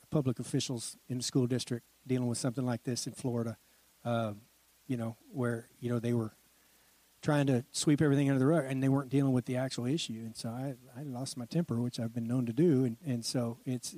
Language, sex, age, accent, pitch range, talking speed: English, male, 40-59, American, 120-140 Hz, 230 wpm